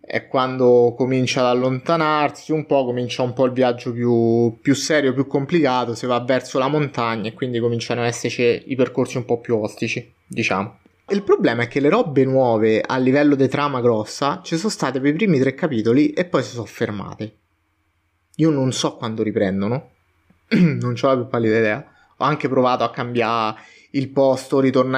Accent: native